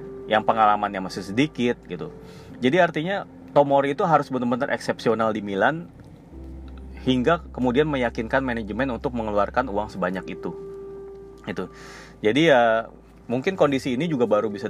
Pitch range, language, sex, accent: 95-130 Hz, Indonesian, male, native